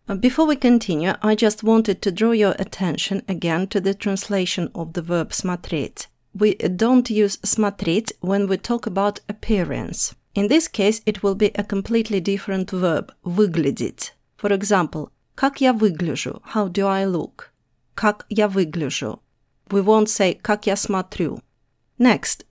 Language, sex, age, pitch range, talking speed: English, female, 30-49, 150-215 Hz, 150 wpm